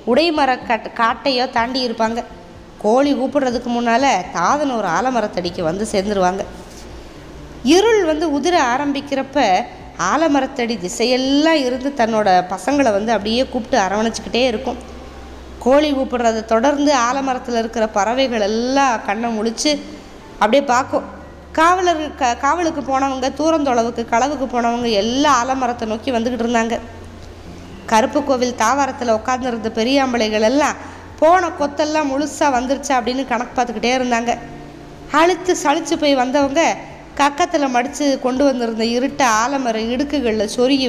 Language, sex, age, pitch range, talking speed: Tamil, female, 20-39, 225-280 Hz, 110 wpm